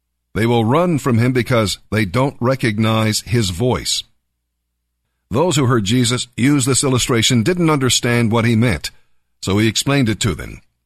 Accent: American